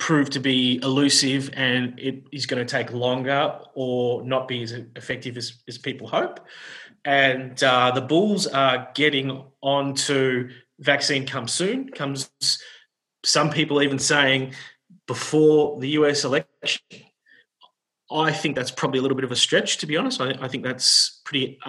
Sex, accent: male, Australian